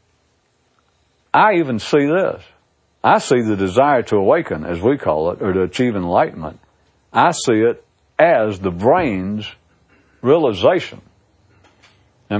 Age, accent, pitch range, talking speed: 60-79, American, 95-145 Hz, 125 wpm